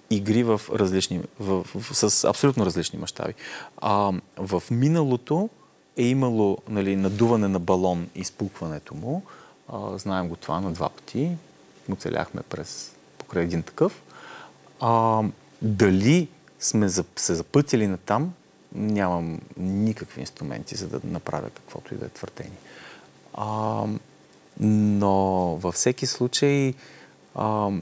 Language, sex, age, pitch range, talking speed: Bulgarian, male, 30-49, 100-130 Hz, 125 wpm